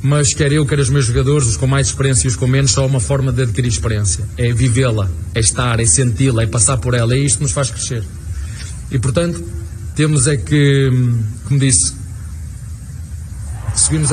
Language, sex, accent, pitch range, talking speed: Portuguese, male, Portuguese, 110-145 Hz, 200 wpm